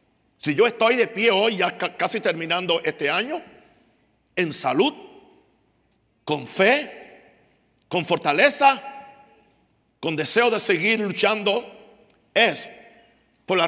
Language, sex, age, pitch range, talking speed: Spanish, male, 60-79, 175-255 Hz, 110 wpm